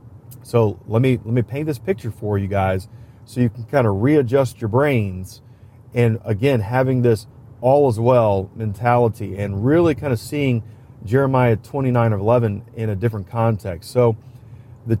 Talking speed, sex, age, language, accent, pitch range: 170 wpm, male, 40-59, English, American, 110-125 Hz